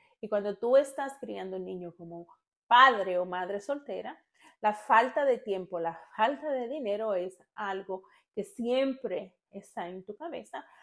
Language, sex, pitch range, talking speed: English, female, 185-250 Hz, 160 wpm